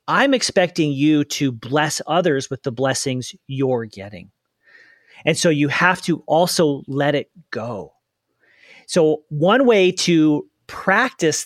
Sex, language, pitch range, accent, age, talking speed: male, English, 135-175 Hz, American, 40-59, 130 wpm